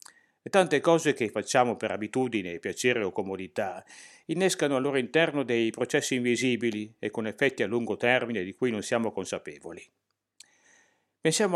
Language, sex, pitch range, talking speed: Italian, male, 115-150 Hz, 145 wpm